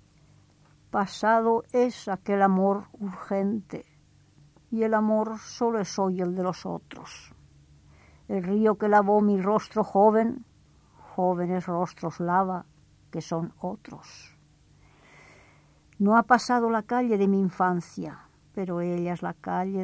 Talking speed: 125 wpm